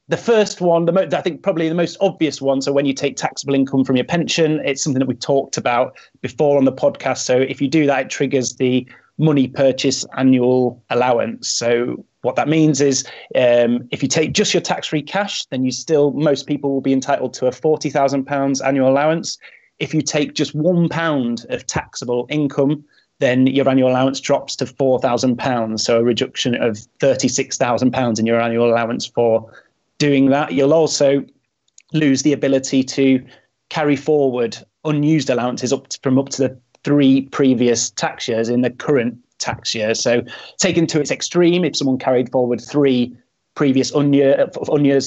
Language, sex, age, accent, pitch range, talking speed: English, male, 30-49, British, 125-150 Hz, 180 wpm